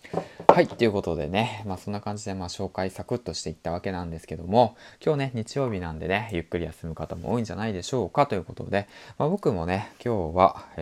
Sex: male